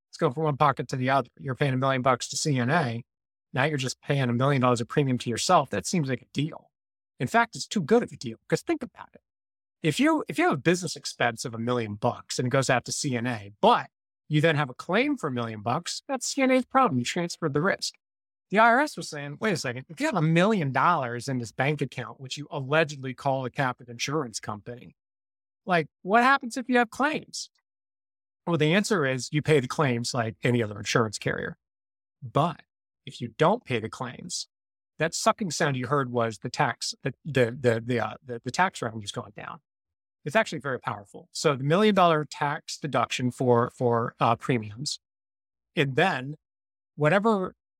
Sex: male